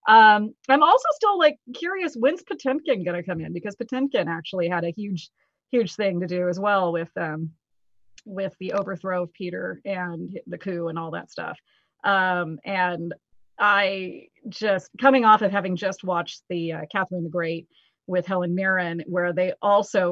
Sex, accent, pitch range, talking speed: female, American, 180-250 Hz, 175 wpm